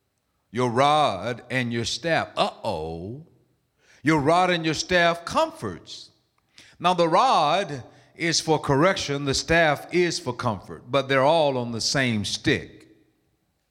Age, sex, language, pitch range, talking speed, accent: 50-69, male, English, 125-175 Hz, 130 wpm, American